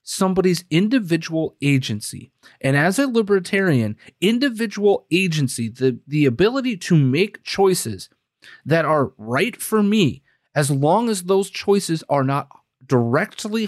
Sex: male